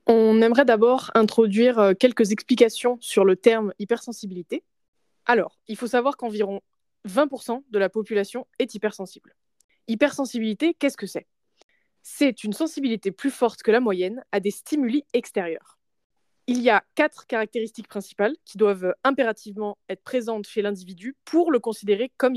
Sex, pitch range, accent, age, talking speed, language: female, 210-270 Hz, French, 20-39, 145 wpm, French